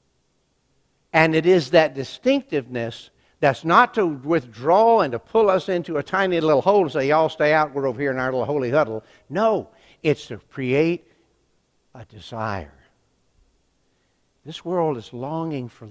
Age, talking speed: 60-79, 160 wpm